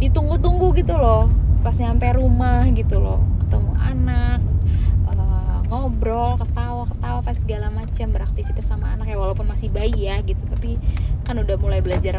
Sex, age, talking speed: female, 20-39, 155 wpm